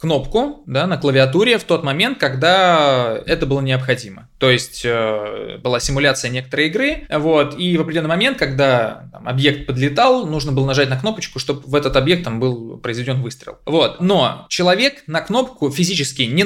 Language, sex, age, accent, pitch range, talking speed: Russian, male, 20-39, native, 135-175 Hz, 150 wpm